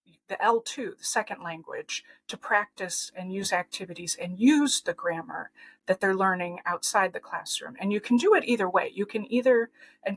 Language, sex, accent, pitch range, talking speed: English, female, American, 195-260 Hz, 185 wpm